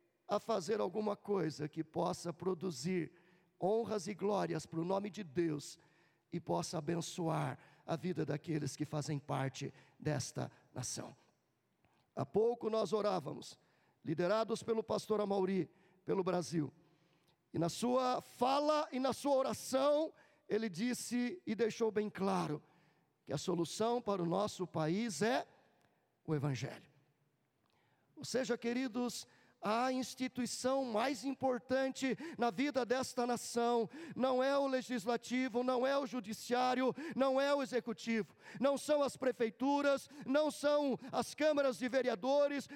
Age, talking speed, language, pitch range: 50-69, 130 wpm, Portuguese, 175-265 Hz